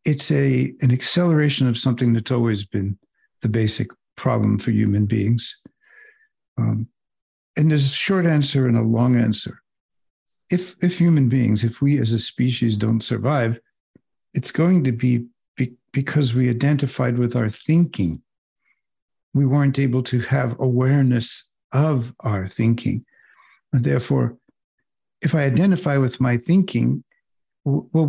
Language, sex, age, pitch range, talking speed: English, male, 60-79, 120-150 Hz, 140 wpm